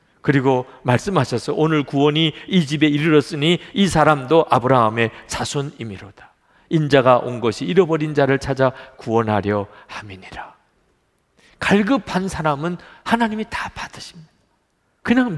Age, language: 50-69, Korean